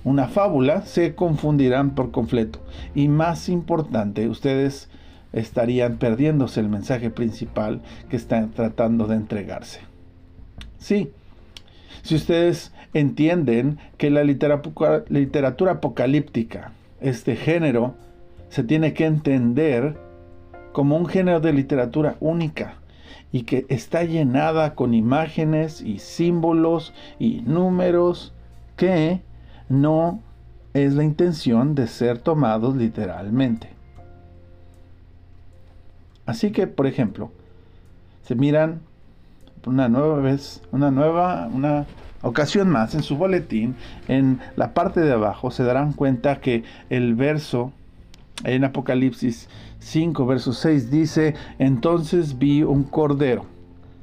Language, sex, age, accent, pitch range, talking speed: Spanish, male, 50-69, Mexican, 110-155 Hz, 110 wpm